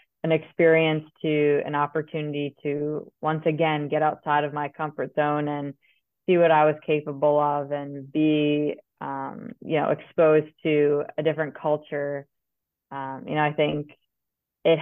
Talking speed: 150 wpm